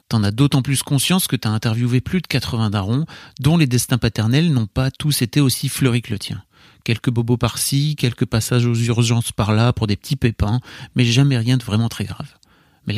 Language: French